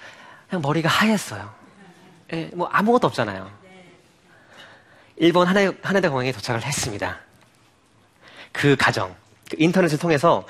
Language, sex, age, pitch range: Korean, male, 40-59, 105-145 Hz